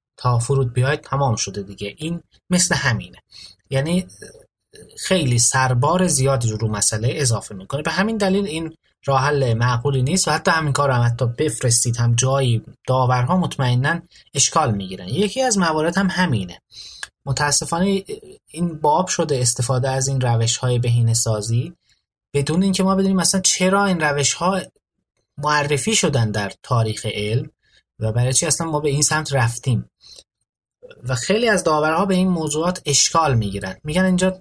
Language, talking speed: Persian, 155 wpm